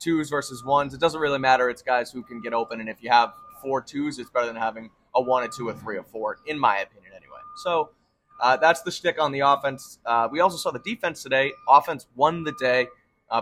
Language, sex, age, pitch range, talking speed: English, male, 20-39, 115-145 Hz, 245 wpm